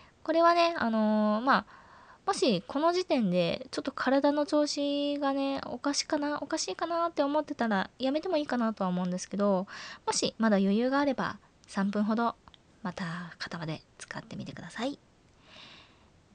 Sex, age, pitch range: female, 20-39, 190-290 Hz